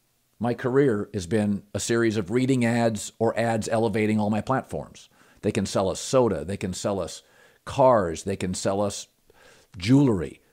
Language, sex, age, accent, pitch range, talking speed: English, male, 50-69, American, 105-145 Hz, 170 wpm